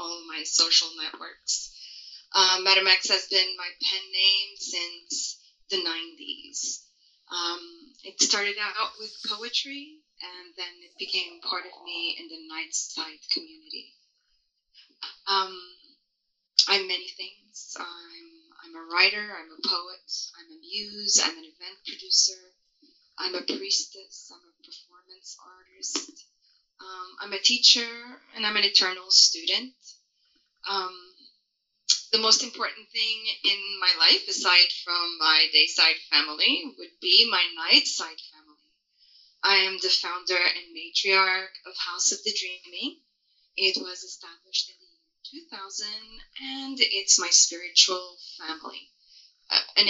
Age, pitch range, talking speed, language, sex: 30-49, 180-295 Hz, 130 wpm, English, female